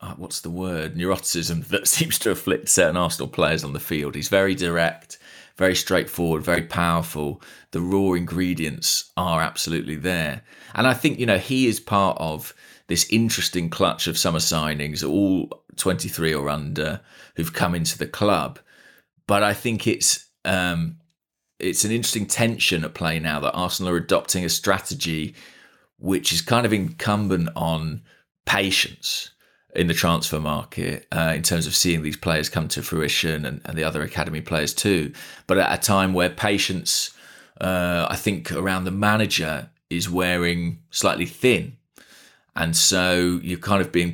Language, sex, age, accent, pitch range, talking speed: English, male, 30-49, British, 80-95 Hz, 160 wpm